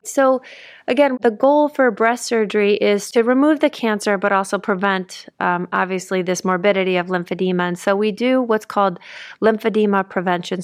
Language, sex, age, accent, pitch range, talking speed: English, female, 30-49, American, 185-215 Hz, 165 wpm